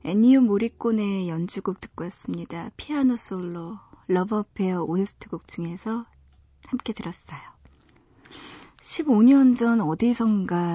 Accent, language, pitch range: native, Korean, 175-235 Hz